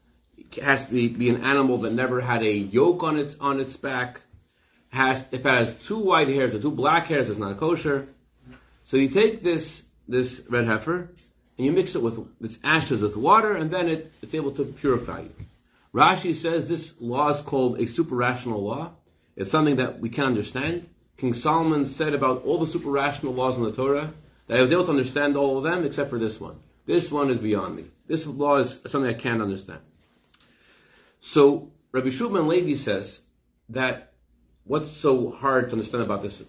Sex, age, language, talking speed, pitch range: male, 30-49, English, 195 wpm, 115-150 Hz